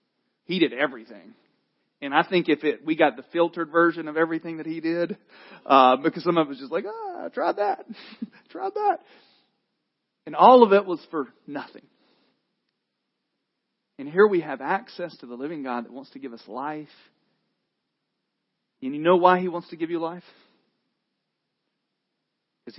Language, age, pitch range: English, 40-59, 125-190 Hz